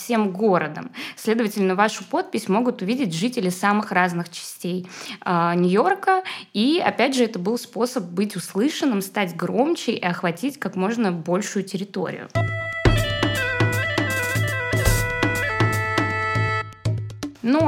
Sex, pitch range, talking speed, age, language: female, 180-240 Hz, 100 wpm, 20-39, Russian